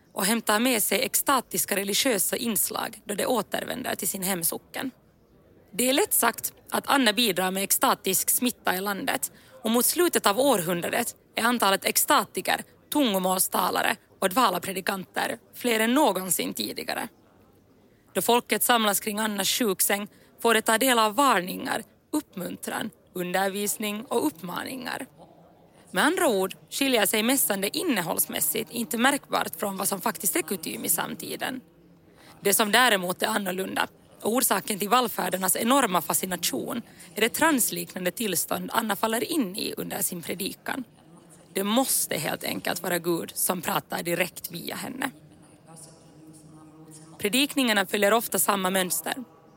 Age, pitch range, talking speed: 20-39, 185-240 Hz, 135 wpm